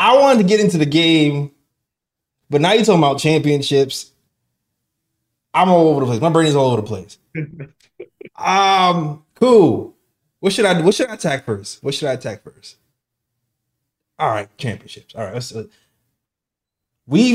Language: English